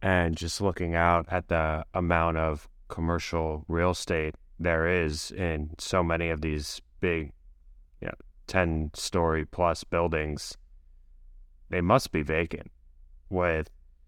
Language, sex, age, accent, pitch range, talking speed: English, male, 20-39, American, 75-85 Hz, 130 wpm